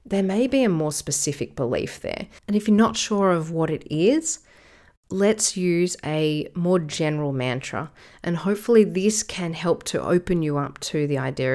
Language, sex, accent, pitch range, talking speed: English, female, Australian, 150-190 Hz, 180 wpm